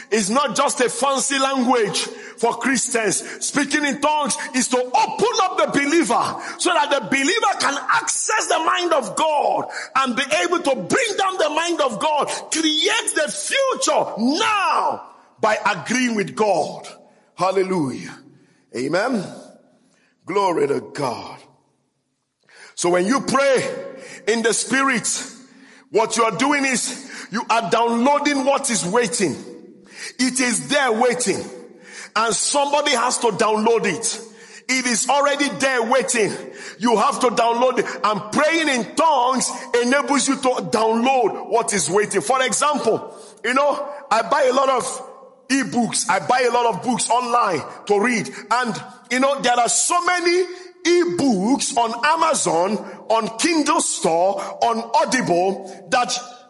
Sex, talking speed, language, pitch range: male, 140 wpm, English, 230-295 Hz